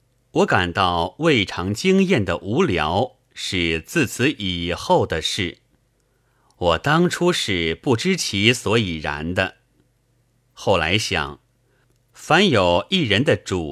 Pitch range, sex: 90-130 Hz, male